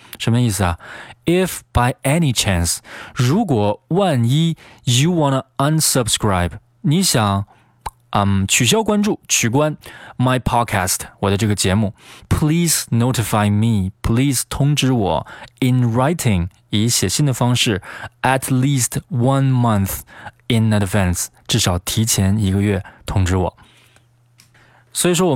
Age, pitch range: 20-39, 100-130 Hz